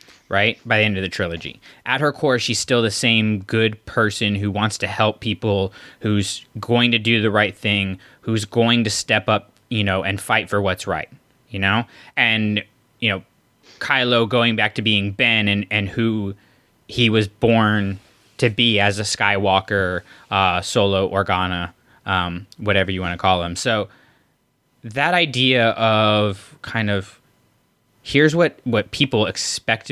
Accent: American